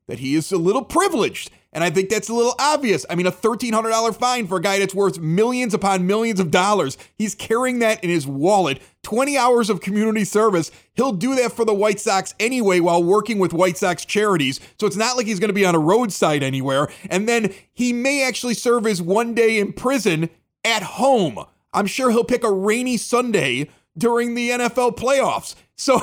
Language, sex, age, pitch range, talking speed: English, male, 30-49, 175-235 Hz, 210 wpm